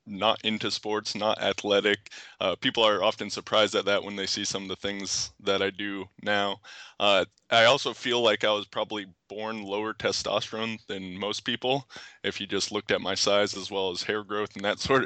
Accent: American